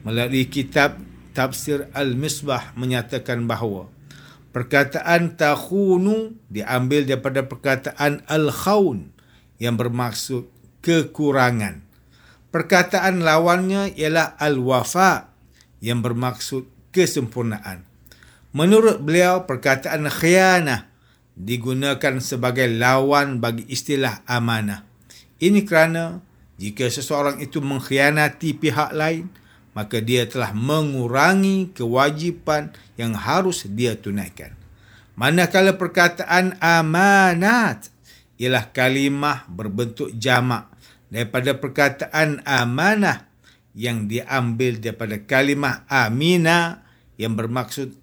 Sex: male